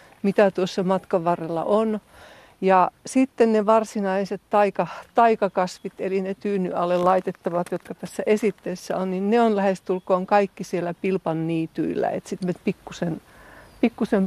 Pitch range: 180-215 Hz